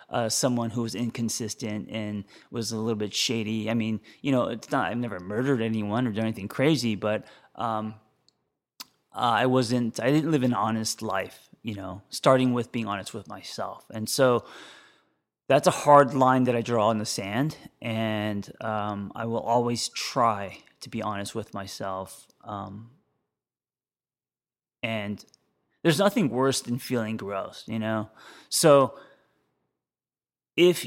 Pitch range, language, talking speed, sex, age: 110-130 Hz, English, 150 wpm, male, 30-49